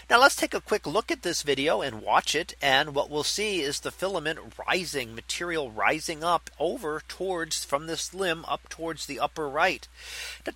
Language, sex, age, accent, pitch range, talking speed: English, male, 40-59, American, 135-180 Hz, 195 wpm